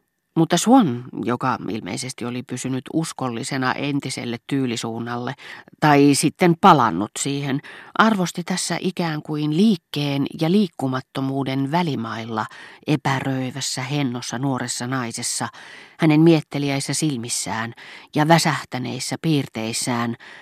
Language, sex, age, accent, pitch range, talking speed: Finnish, female, 40-59, native, 125-155 Hz, 90 wpm